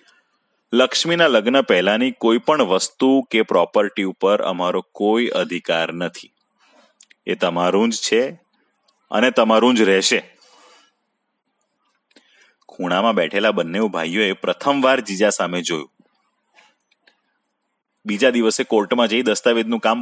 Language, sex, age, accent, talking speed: Gujarati, male, 30-49, native, 110 wpm